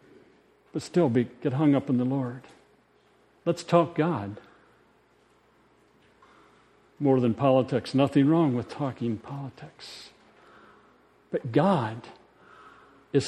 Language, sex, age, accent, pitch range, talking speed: English, male, 50-69, American, 125-165 Hz, 100 wpm